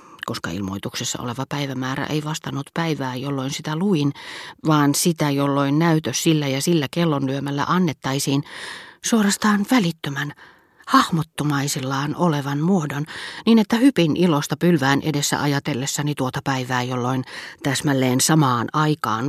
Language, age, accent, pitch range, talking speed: Finnish, 40-59, native, 125-155 Hz, 115 wpm